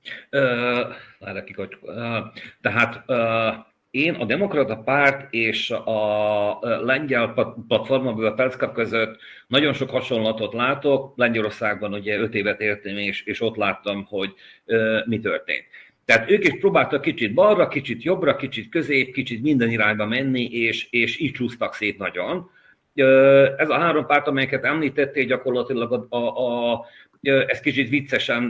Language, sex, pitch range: Hungarian, male, 110-140 Hz